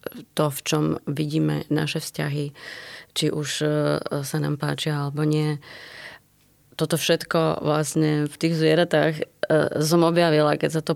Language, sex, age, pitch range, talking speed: Slovak, female, 20-39, 150-160 Hz, 130 wpm